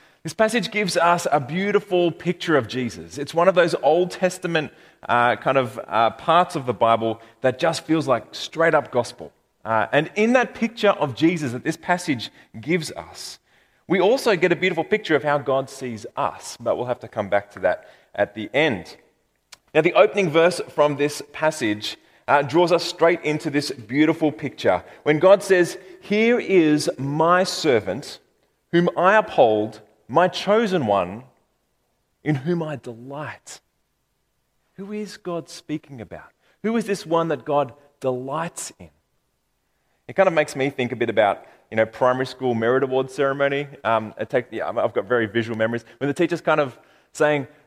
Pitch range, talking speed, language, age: 125-180 Hz, 170 wpm, English, 30-49